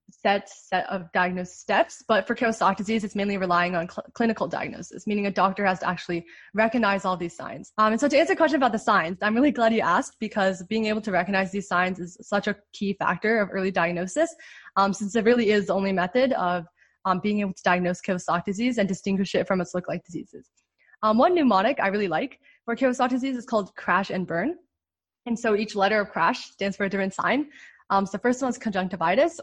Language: English